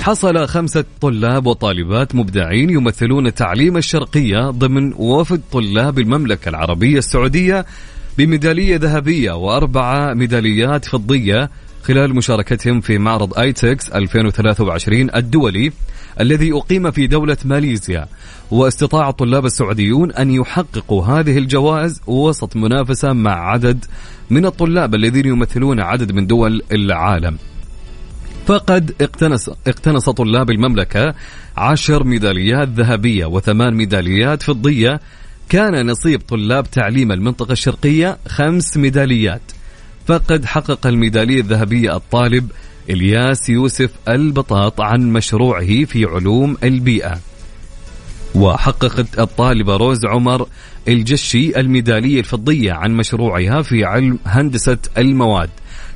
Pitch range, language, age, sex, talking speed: 110-140 Hz, Arabic, 30-49, male, 100 wpm